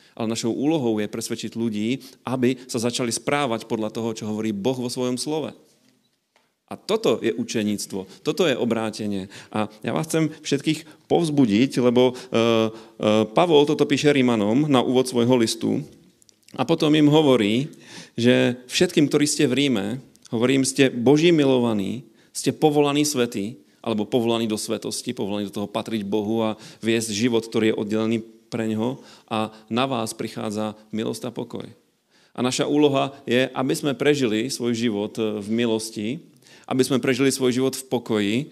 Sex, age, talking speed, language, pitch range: male, 40-59, 155 wpm, Slovak, 110-130 Hz